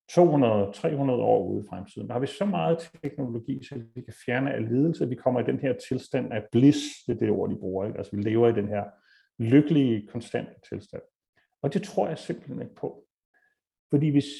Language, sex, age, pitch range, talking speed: Danish, male, 40-59, 120-165 Hz, 215 wpm